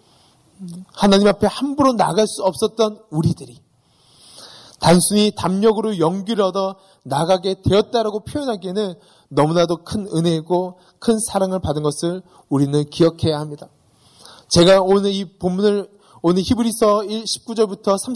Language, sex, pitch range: Korean, male, 180-220 Hz